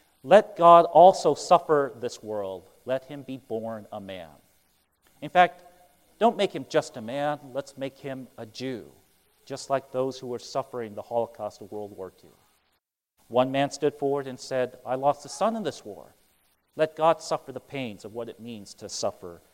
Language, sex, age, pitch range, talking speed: English, male, 40-59, 120-190 Hz, 185 wpm